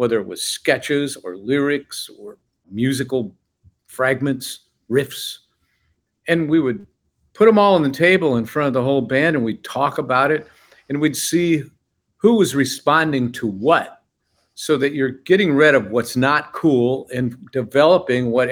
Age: 50-69